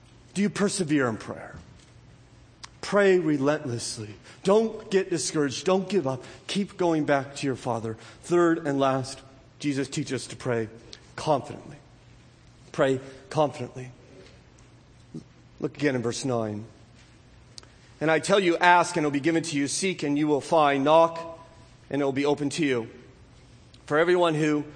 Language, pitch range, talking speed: English, 125-165 Hz, 155 wpm